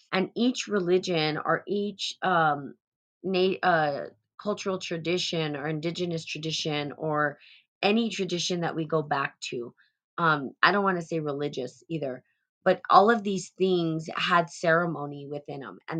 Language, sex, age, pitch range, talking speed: English, female, 30-49, 150-175 Hz, 145 wpm